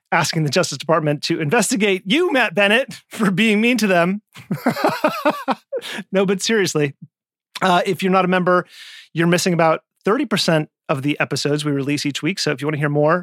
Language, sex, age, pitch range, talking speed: English, male, 30-49, 130-175 Hz, 185 wpm